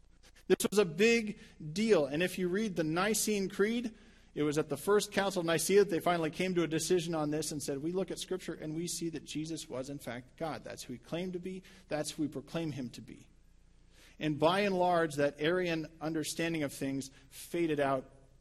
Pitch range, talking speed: 145-185 Hz, 220 wpm